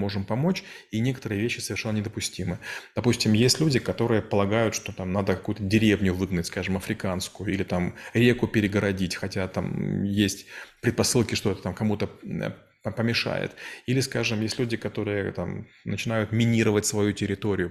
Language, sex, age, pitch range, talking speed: Russian, male, 20-39, 100-115 Hz, 145 wpm